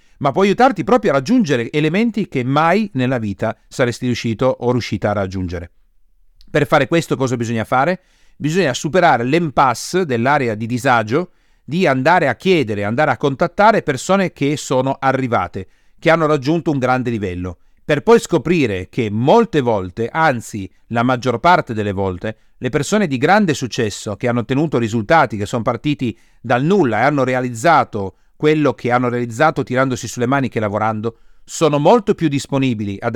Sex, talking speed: male, 160 wpm